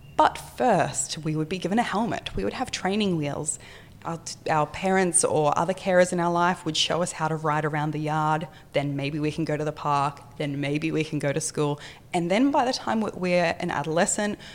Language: English